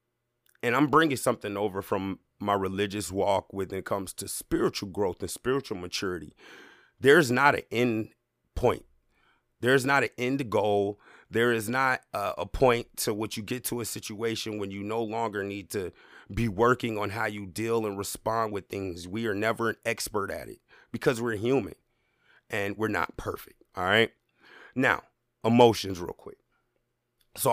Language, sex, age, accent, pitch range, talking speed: English, male, 30-49, American, 105-120 Hz, 170 wpm